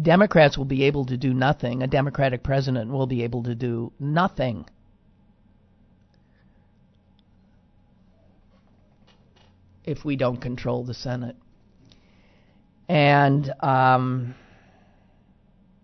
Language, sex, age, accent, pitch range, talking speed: English, male, 50-69, American, 105-145 Hz, 90 wpm